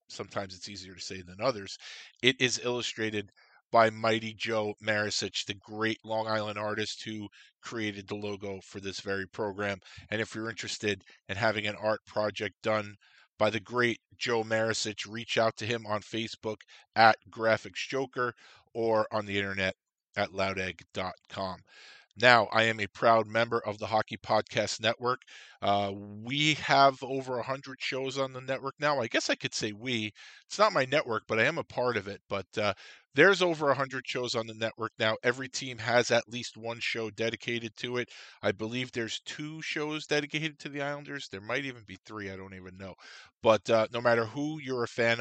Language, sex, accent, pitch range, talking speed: English, male, American, 105-125 Hz, 185 wpm